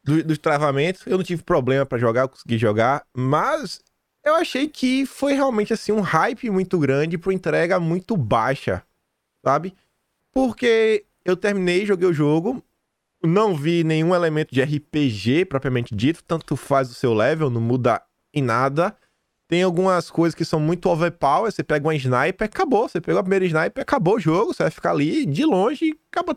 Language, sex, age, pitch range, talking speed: Portuguese, male, 20-39, 145-205 Hz, 180 wpm